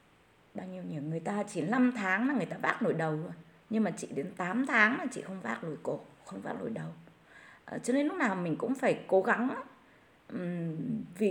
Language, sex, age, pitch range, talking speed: Vietnamese, female, 20-39, 170-245 Hz, 225 wpm